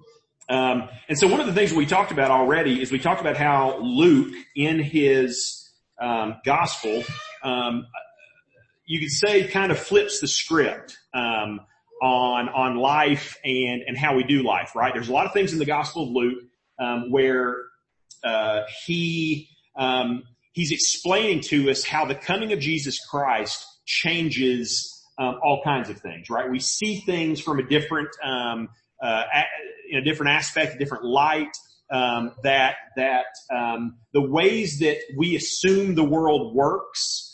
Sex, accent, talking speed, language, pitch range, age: male, American, 160 wpm, English, 130-165 Hz, 40-59